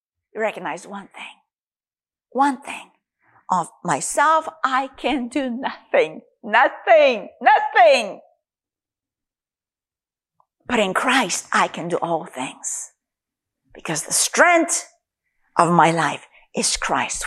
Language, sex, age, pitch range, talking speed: English, female, 50-69, 215-300 Hz, 100 wpm